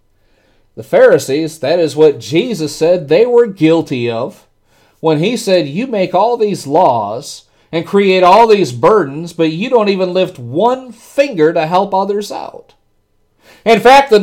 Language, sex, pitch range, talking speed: English, male, 165-255 Hz, 160 wpm